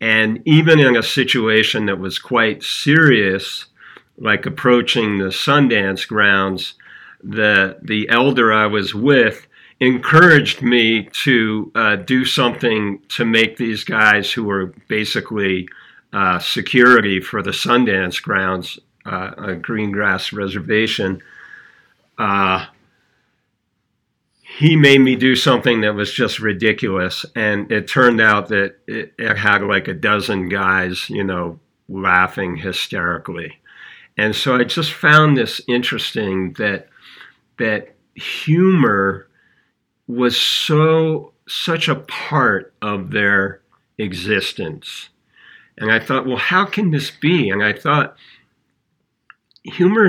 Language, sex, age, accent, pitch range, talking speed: English, male, 50-69, American, 100-135 Hz, 120 wpm